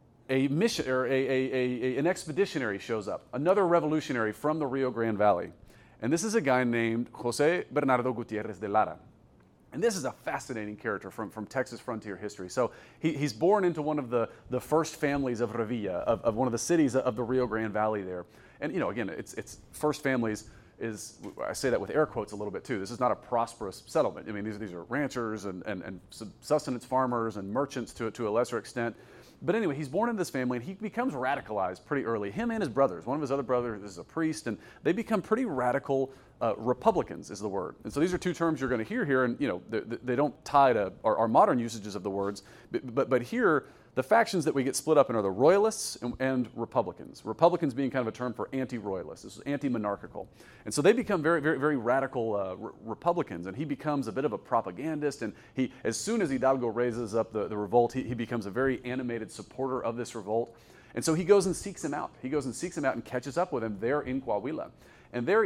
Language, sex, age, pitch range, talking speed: English, male, 40-59, 115-150 Hz, 240 wpm